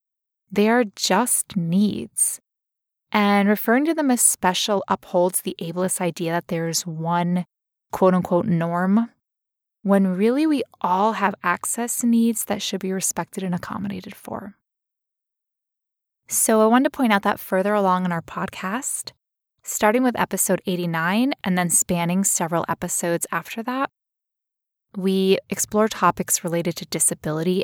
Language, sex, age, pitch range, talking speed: English, female, 20-39, 180-225 Hz, 135 wpm